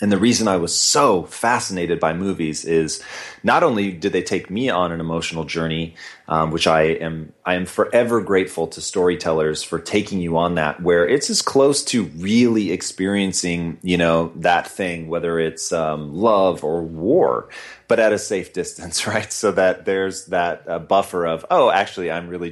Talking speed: 185 wpm